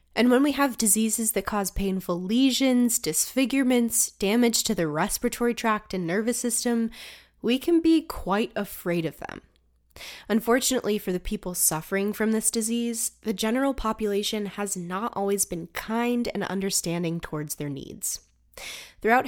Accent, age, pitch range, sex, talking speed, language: American, 20-39, 165-225 Hz, female, 145 wpm, English